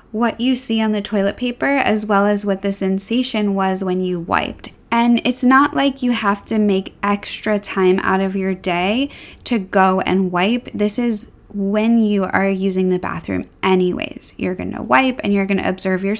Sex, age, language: female, 10-29, English